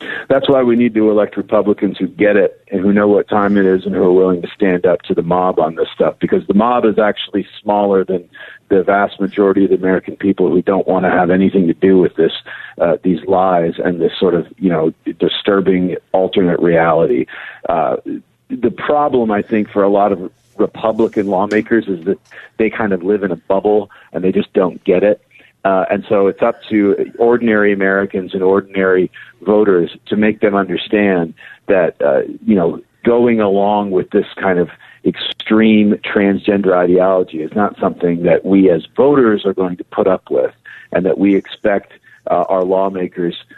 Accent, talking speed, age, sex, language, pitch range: American, 195 wpm, 50-69, male, English, 95-105 Hz